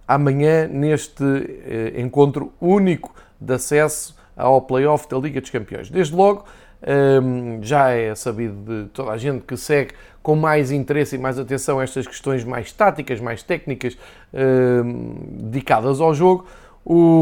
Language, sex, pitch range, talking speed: Portuguese, male, 125-160 Hz, 135 wpm